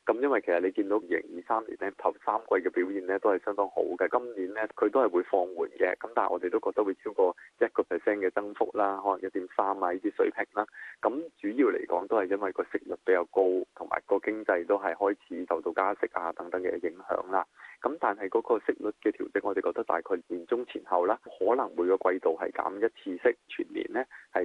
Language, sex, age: Chinese, male, 20-39